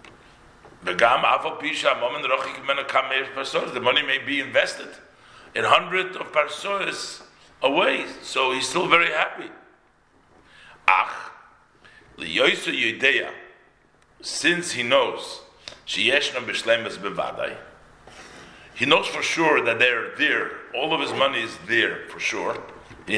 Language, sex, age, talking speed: English, male, 50-69, 90 wpm